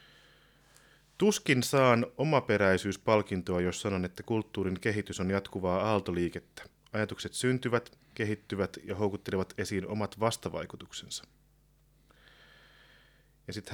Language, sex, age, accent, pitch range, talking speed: Finnish, male, 30-49, native, 100-130 Hz, 90 wpm